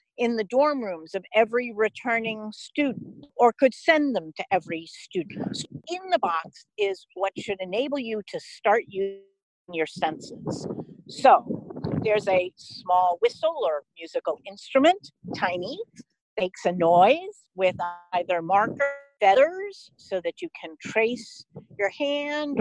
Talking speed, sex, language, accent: 135 wpm, female, English, American